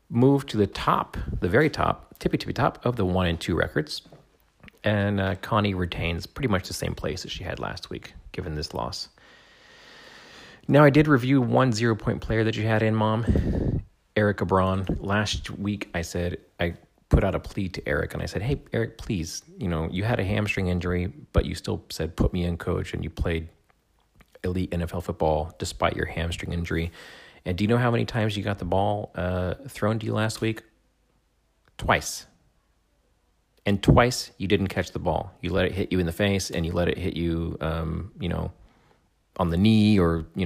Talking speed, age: 205 wpm, 40-59